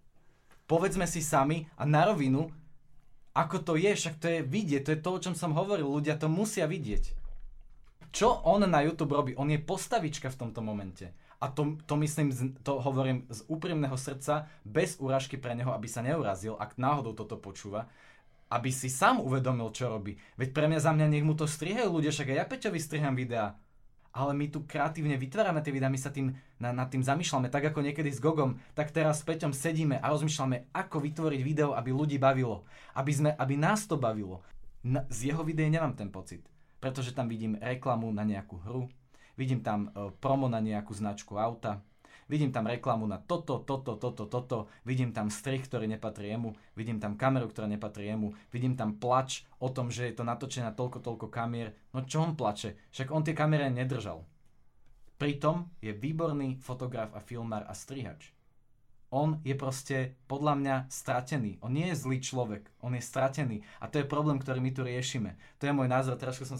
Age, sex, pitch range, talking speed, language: 20-39, male, 115-150 Hz, 190 wpm, Slovak